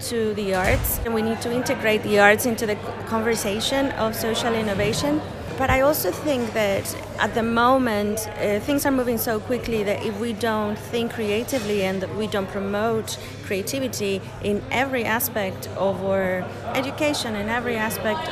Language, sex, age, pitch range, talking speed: English, female, 30-49, 205-250 Hz, 165 wpm